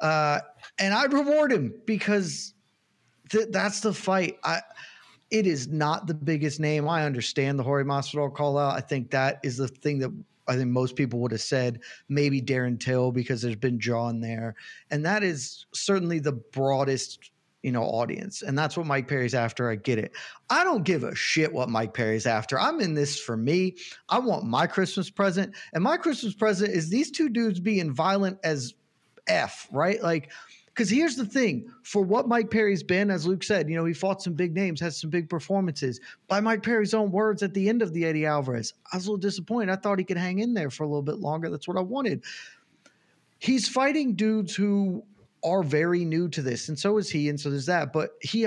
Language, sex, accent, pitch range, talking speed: English, male, American, 140-200 Hz, 215 wpm